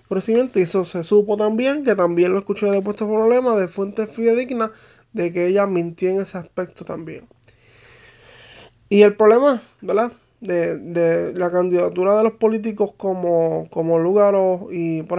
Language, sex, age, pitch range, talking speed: English, male, 20-39, 175-215 Hz, 155 wpm